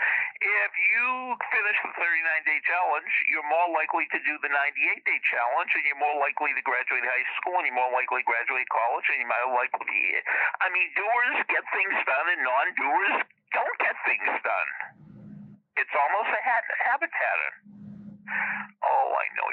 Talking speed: 165 wpm